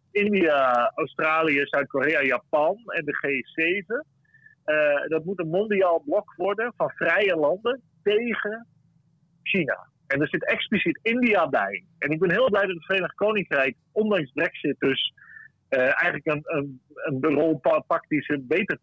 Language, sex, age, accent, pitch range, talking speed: Dutch, male, 40-59, Dutch, 145-205 Hz, 145 wpm